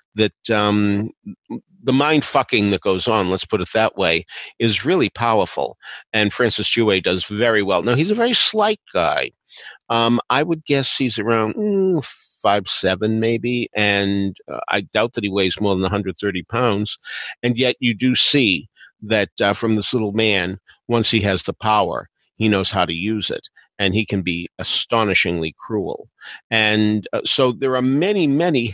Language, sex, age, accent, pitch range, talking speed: English, male, 50-69, American, 100-125 Hz, 170 wpm